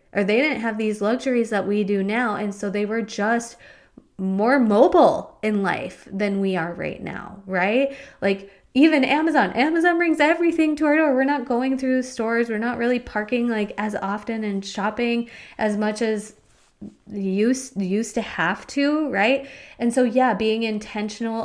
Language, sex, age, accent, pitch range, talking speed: English, female, 20-39, American, 195-245 Hz, 175 wpm